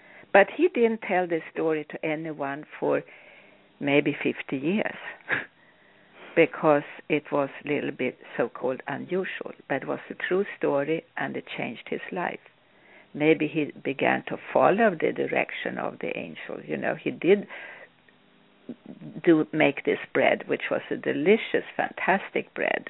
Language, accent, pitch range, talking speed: English, Swedish, 155-215 Hz, 145 wpm